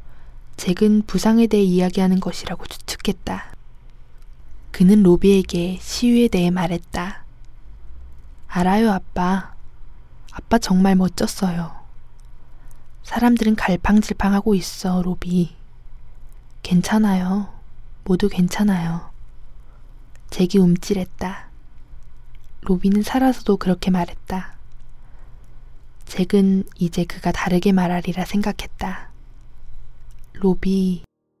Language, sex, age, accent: Korean, female, 20-39, native